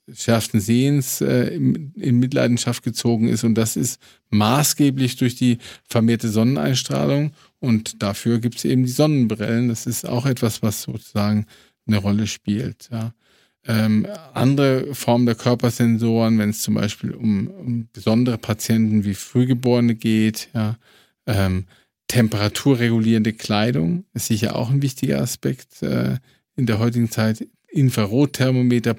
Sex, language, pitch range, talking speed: male, German, 110-125 Hz, 130 wpm